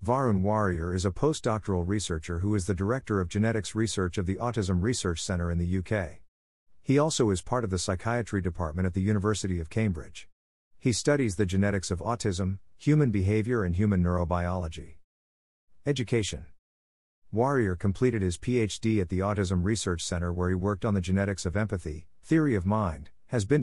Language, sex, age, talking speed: English, male, 50-69, 175 wpm